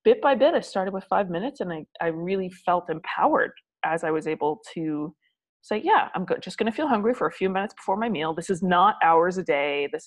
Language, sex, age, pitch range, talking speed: English, female, 30-49, 165-225 Hz, 245 wpm